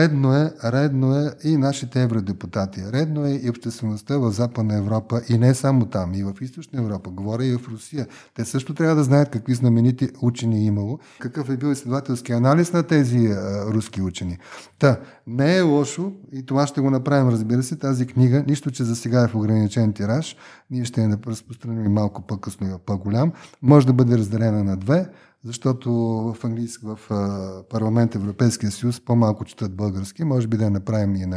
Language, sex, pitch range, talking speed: Bulgarian, male, 110-140 Hz, 180 wpm